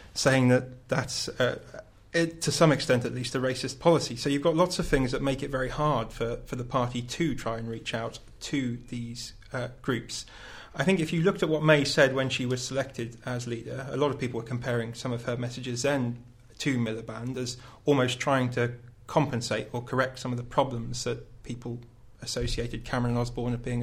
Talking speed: 205 wpm